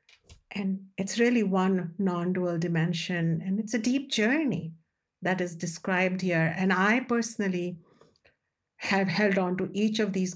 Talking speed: 145 wpm